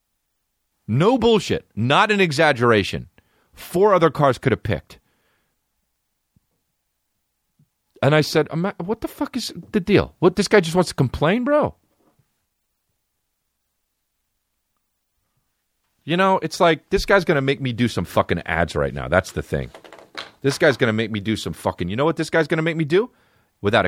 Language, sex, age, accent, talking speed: English, male, 40-59, American, 170 wpm